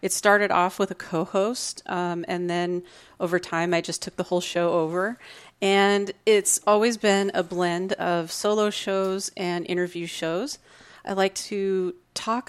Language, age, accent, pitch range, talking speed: English, 30-49, American, 170-195 Hz, 165 wpm